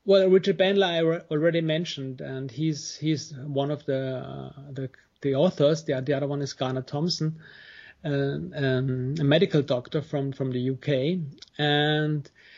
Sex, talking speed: male, 155 wpm